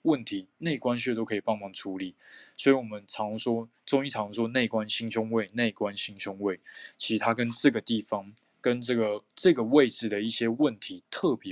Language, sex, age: Chinese, male, 20-39